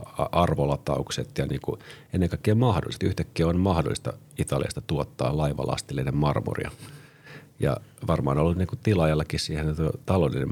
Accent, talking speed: native, 120 wpm